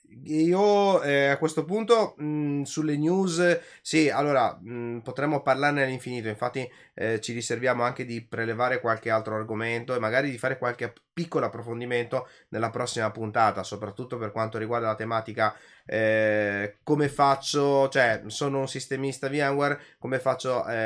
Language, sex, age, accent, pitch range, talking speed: Italian, male, 20-39, native, 120-145 Hz, 145 wpm